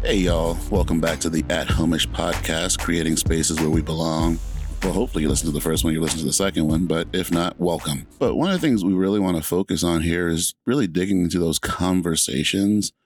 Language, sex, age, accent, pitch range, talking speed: English, male, 30-49, American, 80-90 Hz, 230 wpm